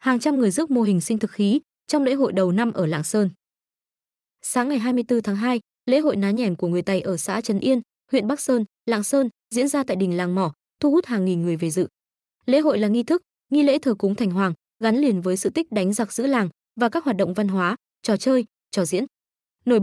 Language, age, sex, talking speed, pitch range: Vietnamese, 20-39, female, 250 wpm, 200-255 Hz